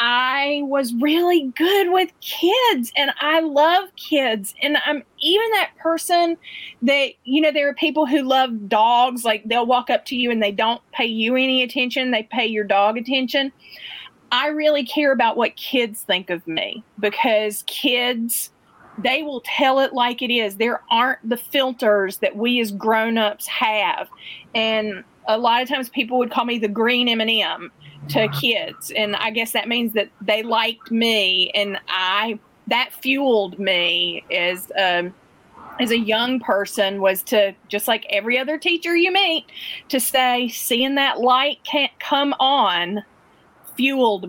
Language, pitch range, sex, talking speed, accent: English, 220-285 Hz, female, 165 wpm, American